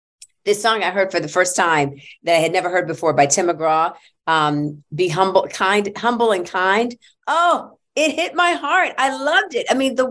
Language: English